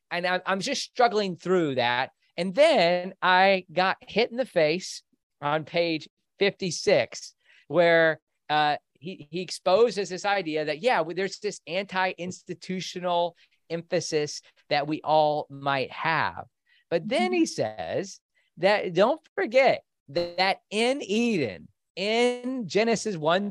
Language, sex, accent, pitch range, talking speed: English, male, American, 155-210 Hz, 125 wpm